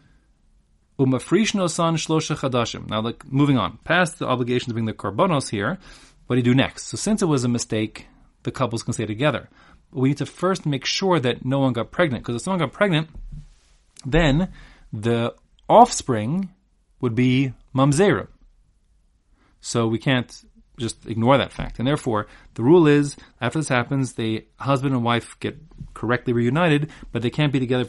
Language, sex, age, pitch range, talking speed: English, male, 30-49, 110-150 Hz, 165 wpm